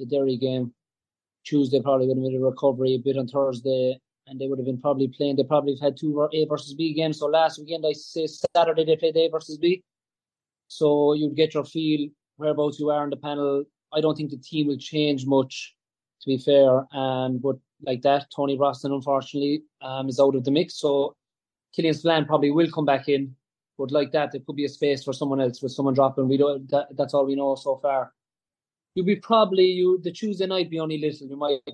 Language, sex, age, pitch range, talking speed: English, male, 20-39, 135-155 Hz, 225 wpm